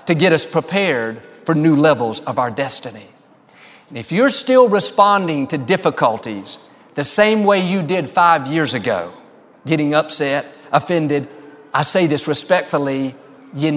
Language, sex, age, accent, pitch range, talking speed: English, male, 50-69, American, 150-190 Hz, 140 wpm